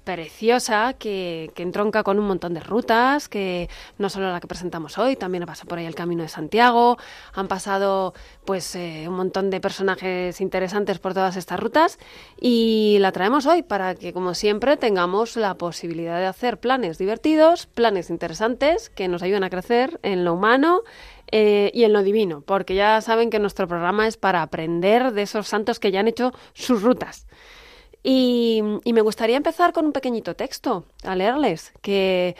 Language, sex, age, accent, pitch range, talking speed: Spanish, female, 30-49, Spanish, 180-245 Hz, 180 wpm